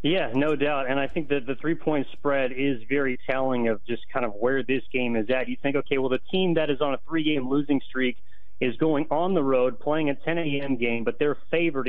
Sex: male